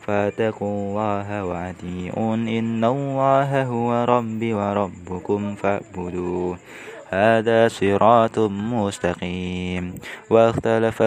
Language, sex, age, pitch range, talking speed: Indonesian, male, 20-39, 100-120 Hz, 70 wpm